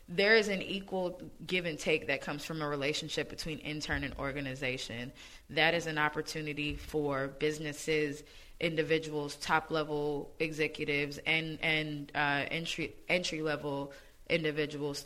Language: English